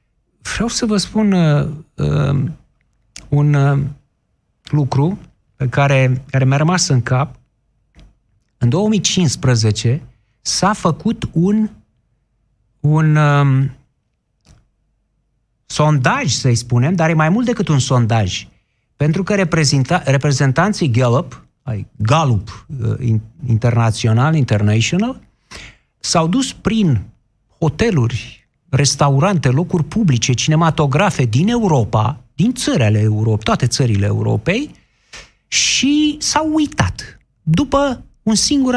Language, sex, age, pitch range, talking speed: Romanian, male, 50-69, 120-195 Hz, 100 wpm